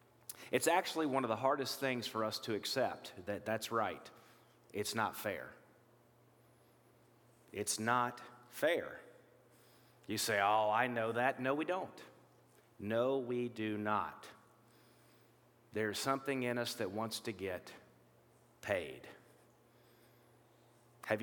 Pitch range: 110-125 Hz